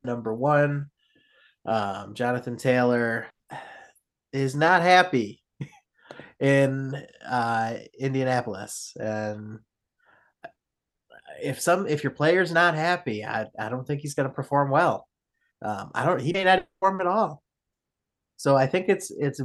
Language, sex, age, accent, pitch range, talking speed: English, male, 30-49, American, 110-145 Hz, 125 wpm